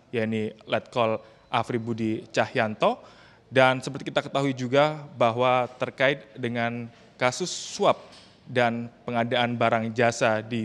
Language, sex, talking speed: Indonesian, male, 120 wpm